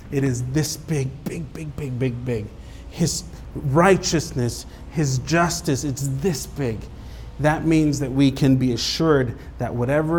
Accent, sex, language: American, male, English